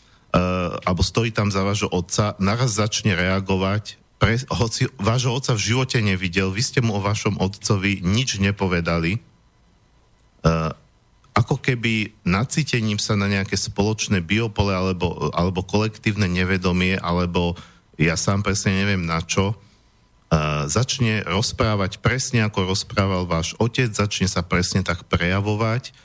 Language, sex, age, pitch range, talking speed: Slovak, male, 50-69, 95-110 Hz, 135 wpm